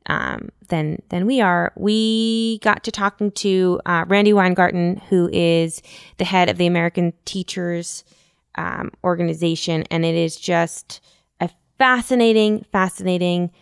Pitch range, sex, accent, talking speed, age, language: 160-185 Hz, female, American, 130 wpm, 20-39, English